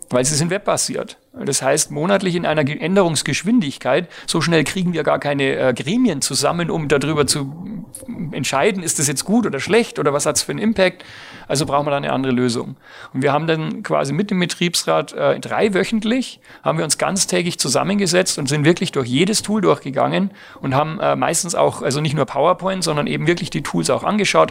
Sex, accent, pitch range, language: male, German, 135-180 Hz, German